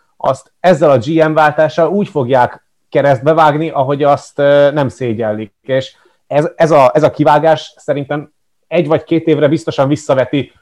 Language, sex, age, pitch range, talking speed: Hungarian, male, 30-49, 130-155 Hz, 145 wpm